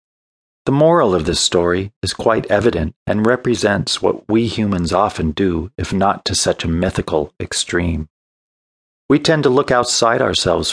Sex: male